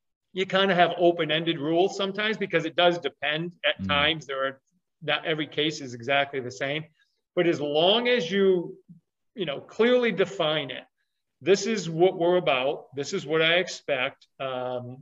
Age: 40-59